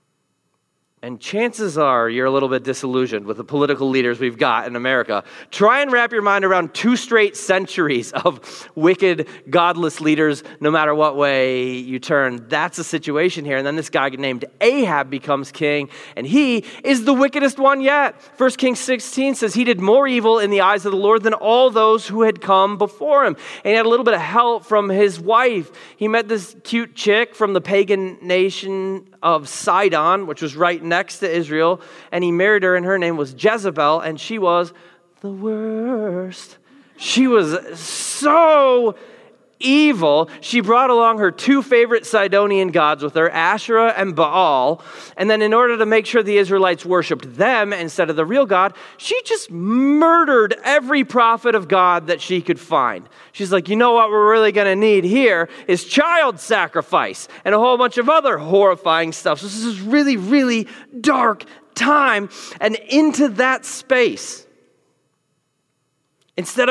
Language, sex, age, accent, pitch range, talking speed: English, male, 30-49, American, 165-240 Hz, 175 wpm